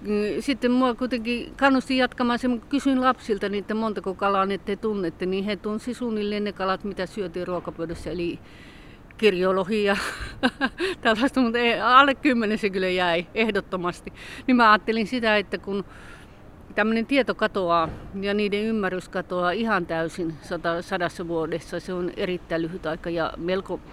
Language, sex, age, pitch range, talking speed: Finnish, female, 50-69, 170-220 Hz, 145 wpm